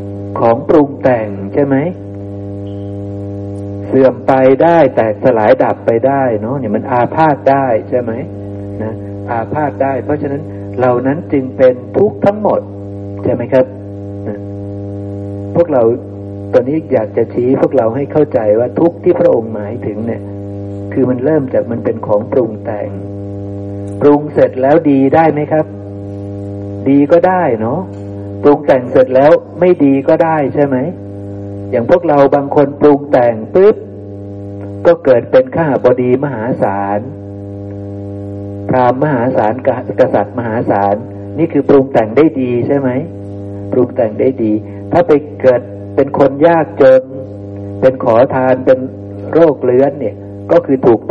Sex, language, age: male, Thai, 60-79